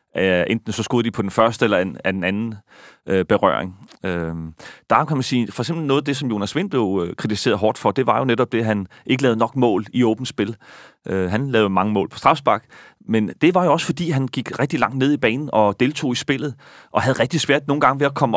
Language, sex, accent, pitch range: Danish, male, native, 105-130 Hz